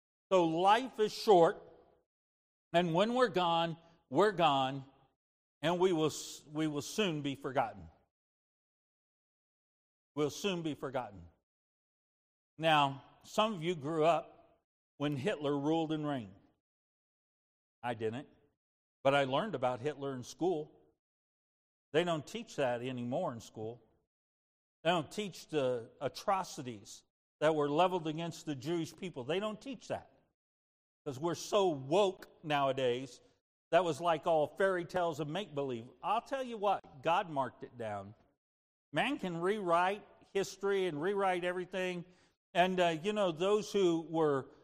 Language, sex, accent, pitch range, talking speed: English, male, American, 135-185 Hz, 135 wpm